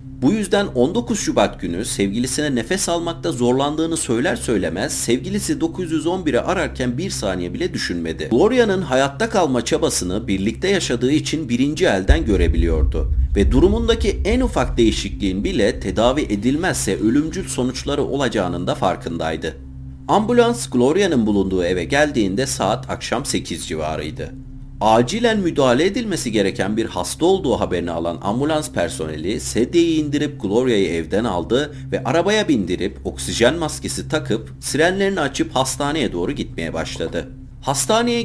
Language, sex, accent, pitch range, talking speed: Turkish, male, native, 95-160 Hz, 125 wpm